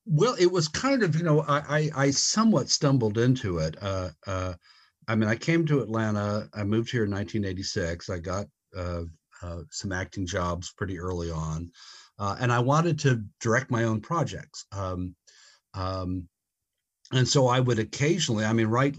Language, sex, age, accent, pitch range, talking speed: English, male, 60-79, American, 90-125 Hz, 175 wpm